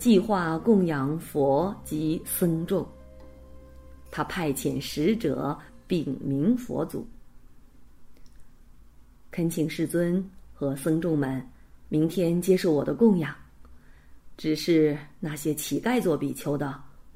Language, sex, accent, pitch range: Chinese, female, native, 135-175 Hz